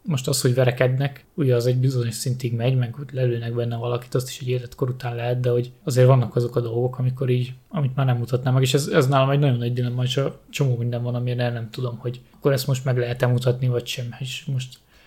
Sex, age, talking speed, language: male, 20-39, 245 wpm, Hungarian